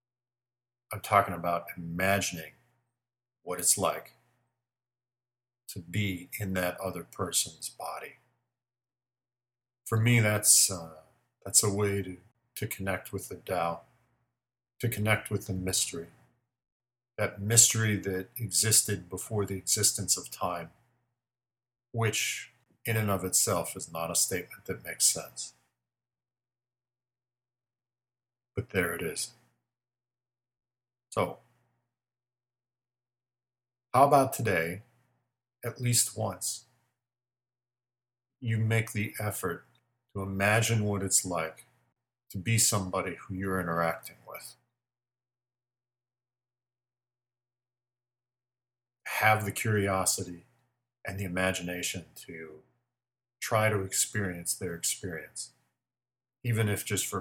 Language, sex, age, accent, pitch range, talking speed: English, male, 50-69, American, 100-120 Hz, 100 wpm